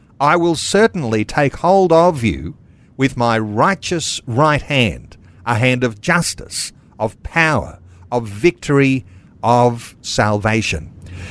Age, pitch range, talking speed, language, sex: 50-69, 105-135 Hz, 115 wpm, English, male